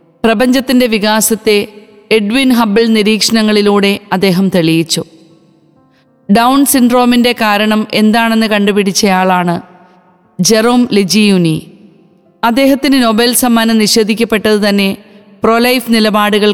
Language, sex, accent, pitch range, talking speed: Malayalam, female, native, 185-225 Hz, 80 wpm